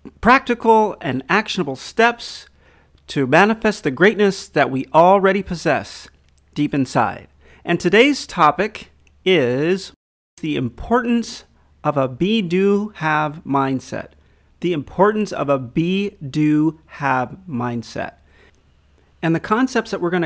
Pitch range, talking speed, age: 135-195 Hz, 120 wpm, 40-59